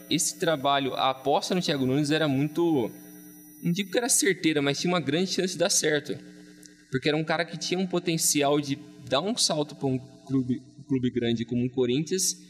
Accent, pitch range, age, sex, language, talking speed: Brazilian, 130-175 Hz, 20-39, male, Portuguese, 200 wpm